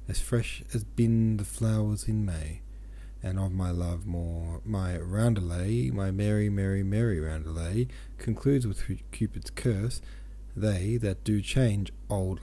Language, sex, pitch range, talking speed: English, male, 90-115 Hz, 140 wpm